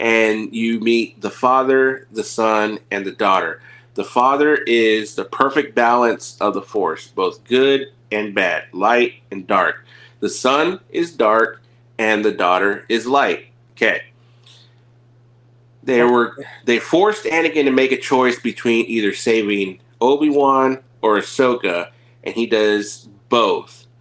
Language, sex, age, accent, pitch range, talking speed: English, male, 30-49, American, 110-120 Hz, 135 wpm